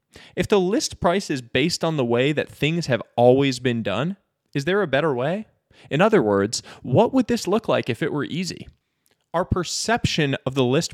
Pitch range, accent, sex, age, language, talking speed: 115-170 Hz, American, male, 20-39, English, 205 wpm